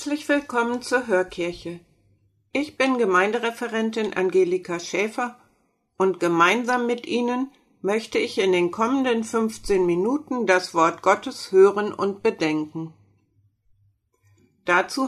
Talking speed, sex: 105 wpm, female